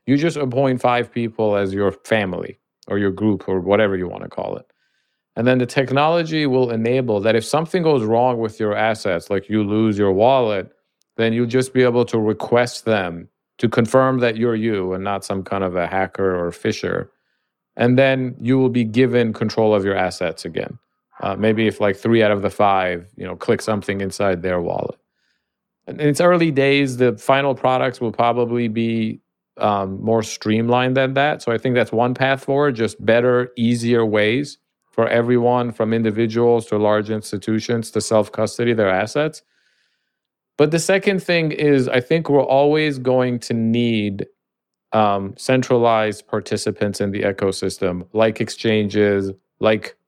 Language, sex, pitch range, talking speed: English, male, 105-125 Hz, 175 wpm